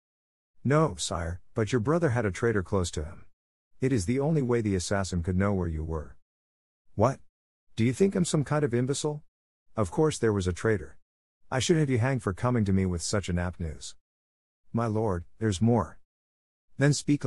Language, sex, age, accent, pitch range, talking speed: English, male, 50-69, American, 85-120 Hz, 200 wpm